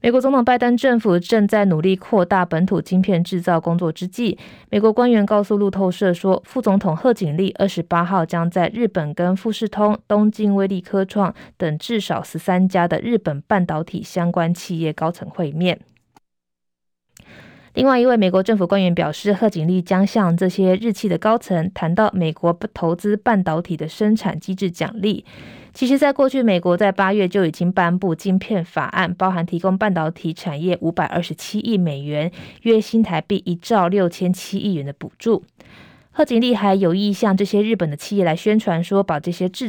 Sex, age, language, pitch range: female, 20-39, Chinese, 170-210 Hz